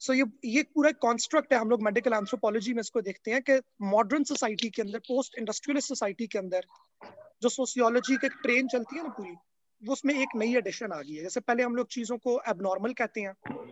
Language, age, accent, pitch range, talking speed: English, 20-39, Indian, 215-265 Hz, 120 wpm